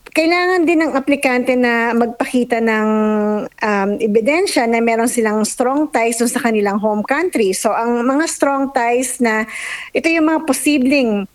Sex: female